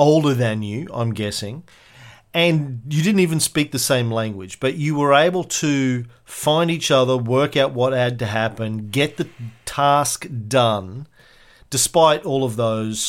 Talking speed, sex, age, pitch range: 160 wpm, male, 40-59, 110-140 Hz